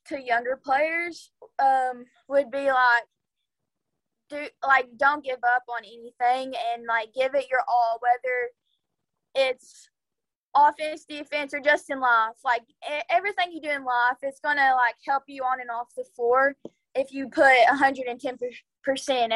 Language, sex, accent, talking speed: English, female, American, 160 wpm